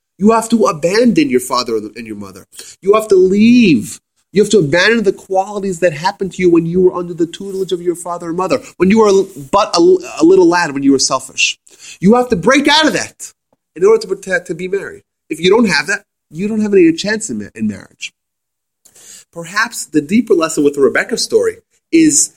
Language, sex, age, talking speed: English, male, 30-49, 215 wpm